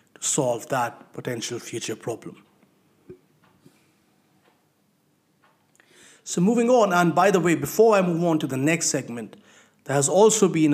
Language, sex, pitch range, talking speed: English, male, 125-160 Hz, 135 wpm